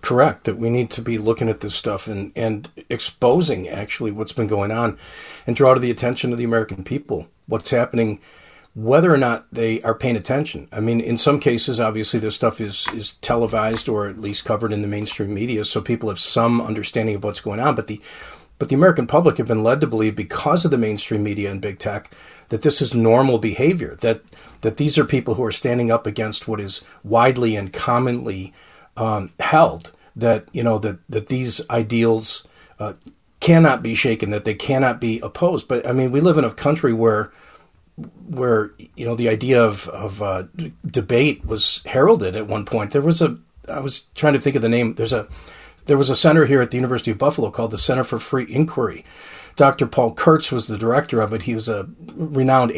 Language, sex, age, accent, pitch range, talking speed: English, male, 40-59, American, 110-130 Hz, 215 wpm